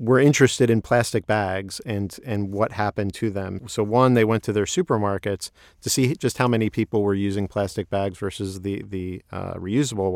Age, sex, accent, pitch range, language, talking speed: 40-59, male, American, 100-120 Hz, English, 195 wpm